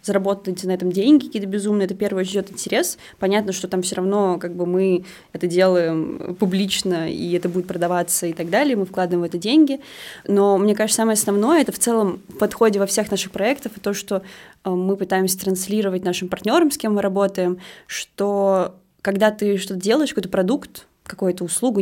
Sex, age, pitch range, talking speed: female, 20-39, 185-210 Hz, 180 wpm